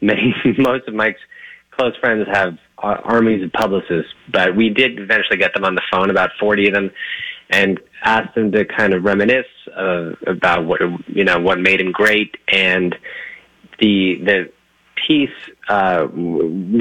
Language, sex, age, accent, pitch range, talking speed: English, male, 30-49, American, 90-110 Hz, 155 wpm